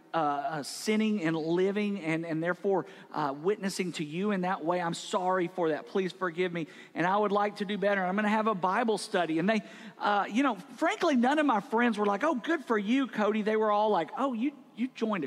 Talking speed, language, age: 235 wpm, English, 50-69